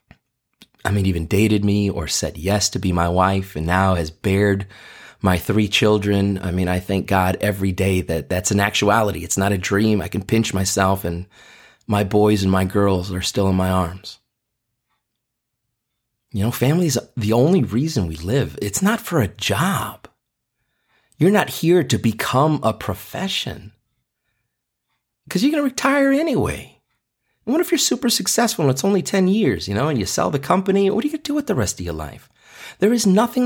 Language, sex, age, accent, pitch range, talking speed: English, male, 30-49, American, 95-140 Hz, 195 wpm